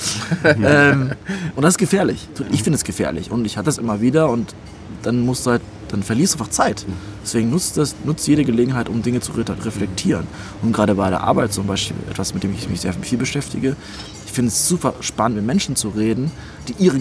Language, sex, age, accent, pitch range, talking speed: German, male, 20-39, German, 100-135 Hz, 215 wpm